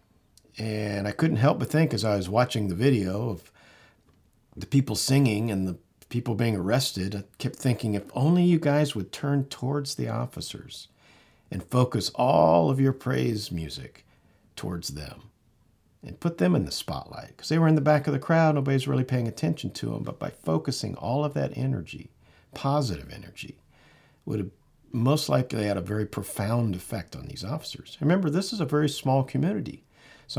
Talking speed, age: 180 wpm, 50-69